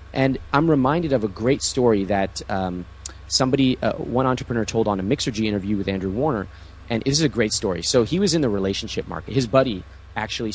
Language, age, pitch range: English, 30-49, 95-130 Hz